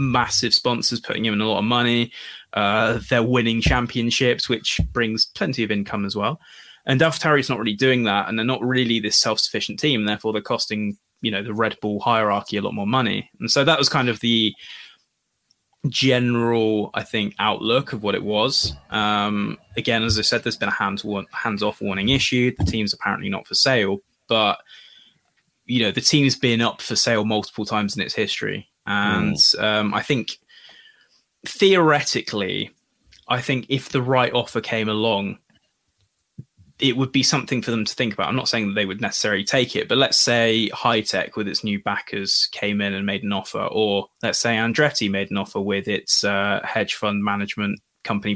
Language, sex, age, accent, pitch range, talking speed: English, male, 20-39, British, 100-120 Hz, 190 wpm